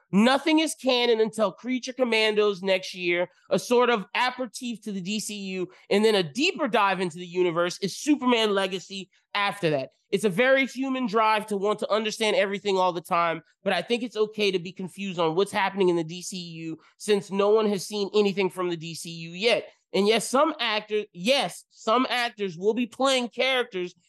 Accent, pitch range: American, 190-255 Hz